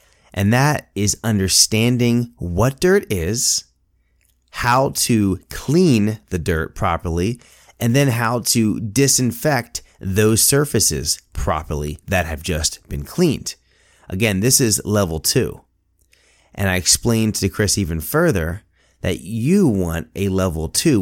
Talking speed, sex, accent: 125 wpm, male, American